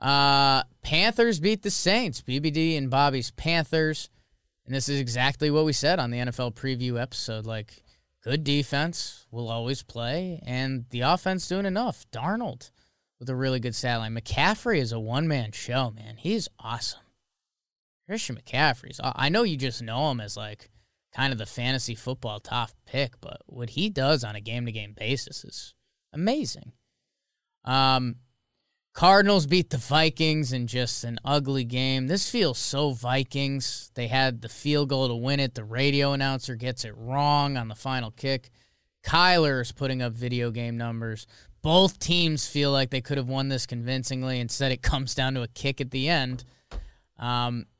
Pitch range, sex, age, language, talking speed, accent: 120-145 Hz, male, 20-39, English, 165 wpm, American